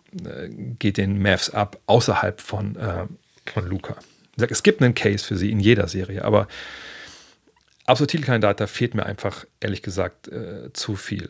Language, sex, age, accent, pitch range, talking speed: German, male, 40-59, German, 100-125 Hz, 170 wpm